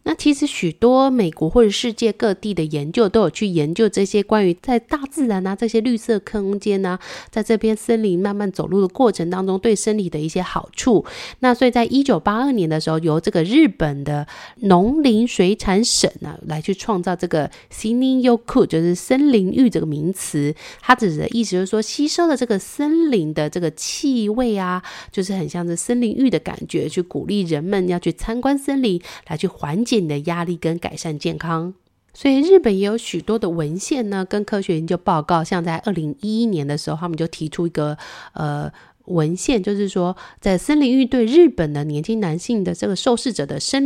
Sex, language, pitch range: female, Chinese, 170-230 Hz